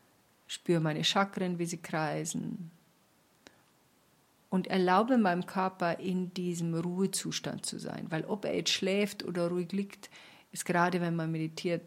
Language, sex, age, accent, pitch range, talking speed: German, female, 50-69, German, 170-200 Hz, 140 wpm